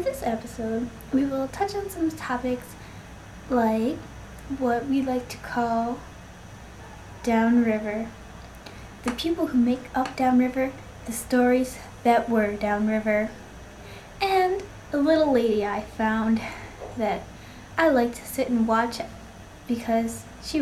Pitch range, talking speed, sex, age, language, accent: 230-305 Hz, 120 wpm, female, 10-29, English, American